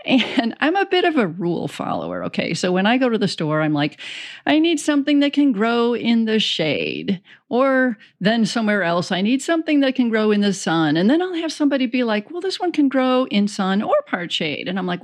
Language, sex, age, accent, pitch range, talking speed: English, female, 40-59, American, 195-305 Hz, 240 wpm